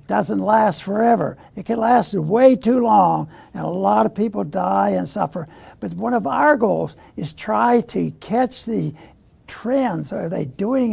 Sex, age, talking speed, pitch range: male, 60-79, 170 wpm, 185-245 Hz